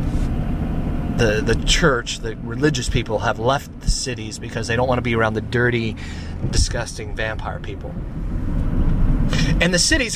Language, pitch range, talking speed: English, 95-160 Hz, 150 wpm